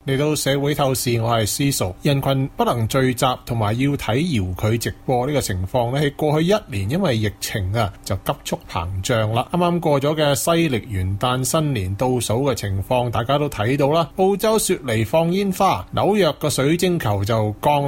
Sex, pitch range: male, 110-160 Hz